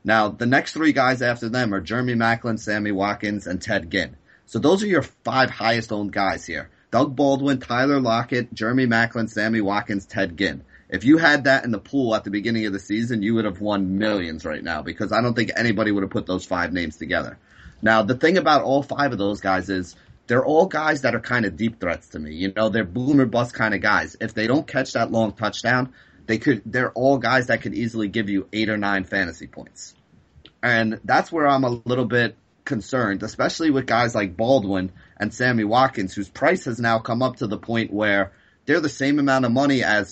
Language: English